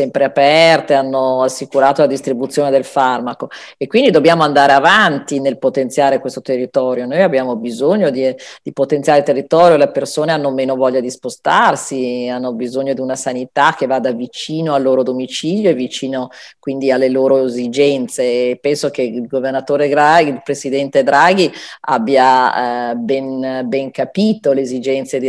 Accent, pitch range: native, 125-140 Hz